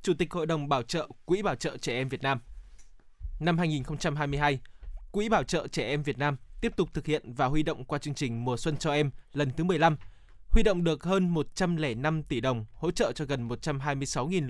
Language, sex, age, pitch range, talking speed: Vietnamese, male, 20-39, 140-180 Hz, 210 wpm